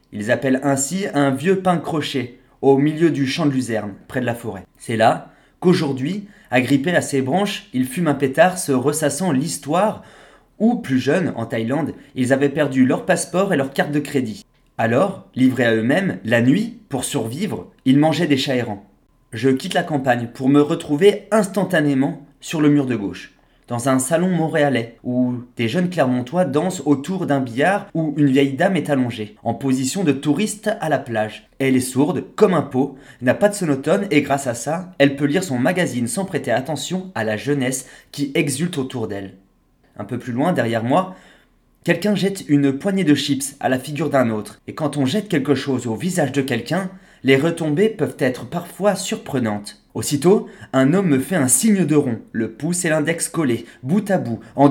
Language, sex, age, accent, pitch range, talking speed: French, male, 30-49, French, 130-175 Hz, 195 wpm